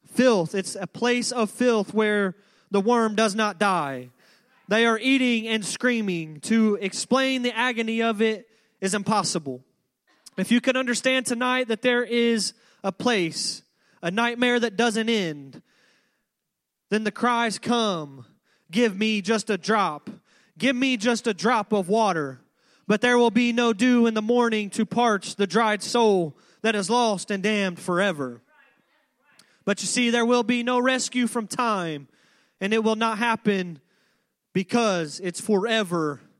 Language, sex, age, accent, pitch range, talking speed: English, male, 20-39, American, 195-235 Hz, 155 wpm